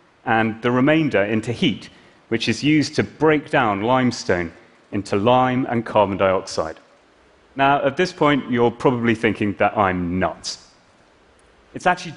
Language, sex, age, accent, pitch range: Chinese, male, 30-49, British, 115-155 Hz